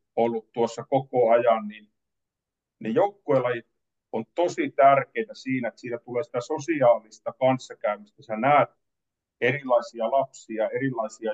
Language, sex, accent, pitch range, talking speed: Finnish, male, native, 120-185 Hz, 115 wpm